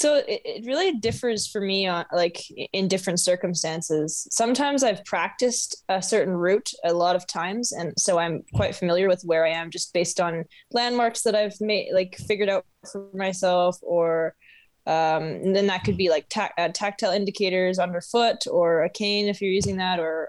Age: 10-29